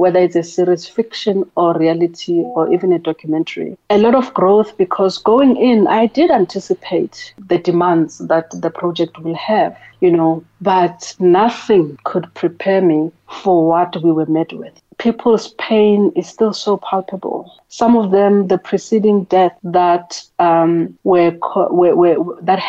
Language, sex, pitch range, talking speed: English, female, 175-210 Hz, 160 wpm